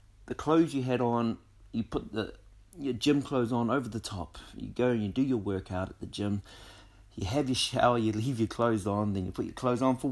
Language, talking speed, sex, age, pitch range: English, 245 wpm, male, 30-49, 100-125 Hz